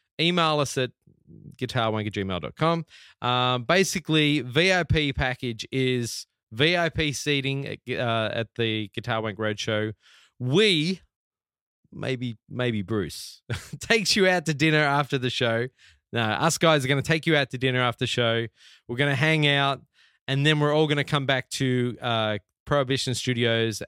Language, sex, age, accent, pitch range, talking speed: English, male, 20-39, Australian, 115-145 Hz, 160 wpm